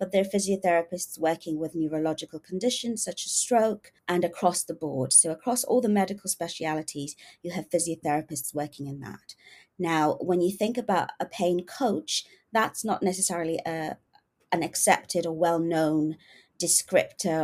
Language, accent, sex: English, British, female